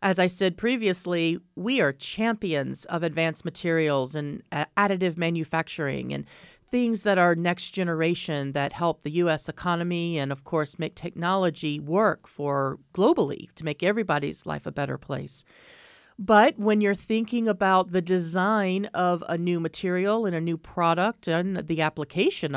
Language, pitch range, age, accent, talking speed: English, 160-205 Hz, 40-59, American, 150 wpm